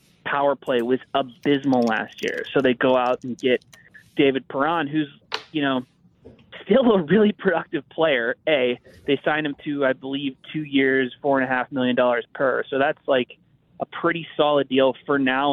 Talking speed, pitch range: 180 wpm, 130-160 Hz